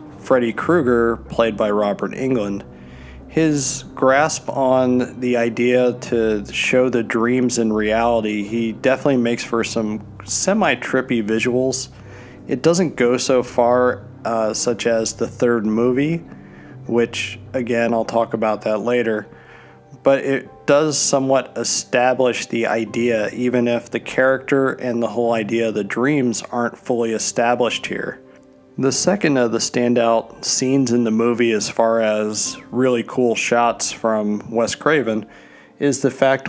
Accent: American